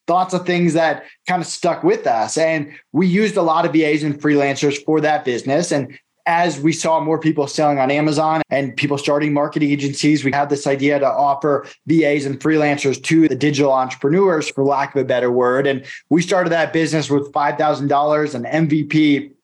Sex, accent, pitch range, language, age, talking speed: male, American, 145-170 Hz, English, 20-39, 195 wpm